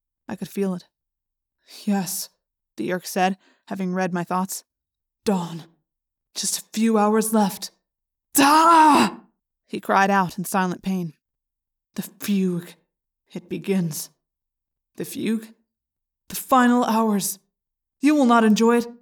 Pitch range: 180-210 Hz